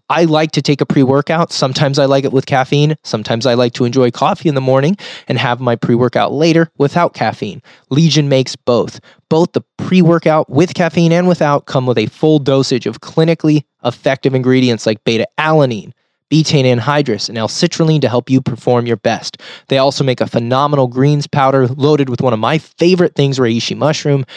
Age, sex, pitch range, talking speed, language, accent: 20-39, male, 120-155 Hz, 185 wpm, English, American